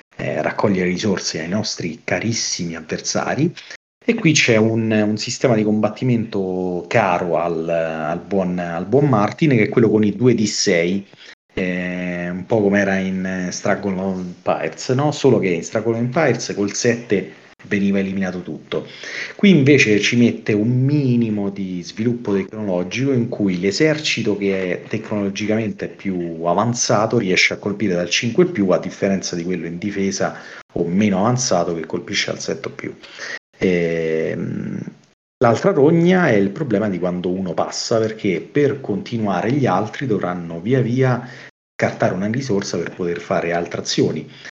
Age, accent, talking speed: 40-59, native, 155 wpm